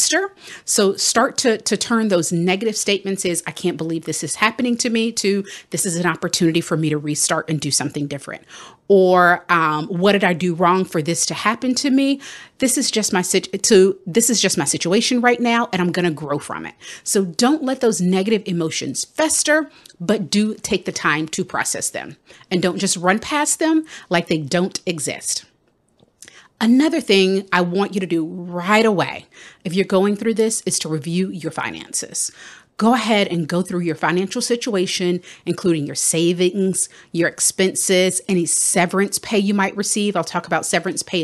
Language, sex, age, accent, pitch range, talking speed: English, female, 40-59, American, 170-220 Hz, 190 wpm